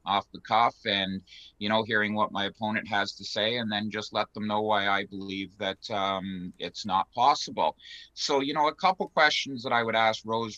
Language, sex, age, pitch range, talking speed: English, male, 30-49, 95-115 Hz, 215 wpm